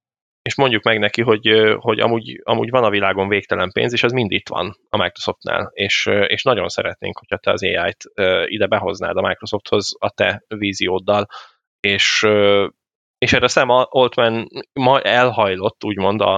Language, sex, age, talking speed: Hungarian, male, 10-29, 155 wpm